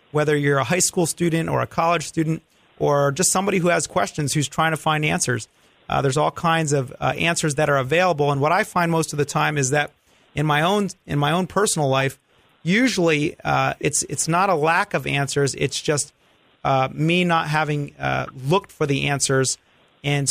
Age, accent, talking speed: 30-49, American, 205 wpm